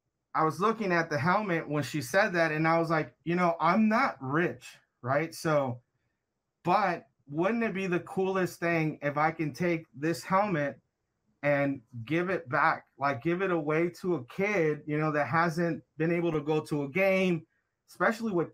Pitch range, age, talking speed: 150-185 Hz, 30-49, 190 wpm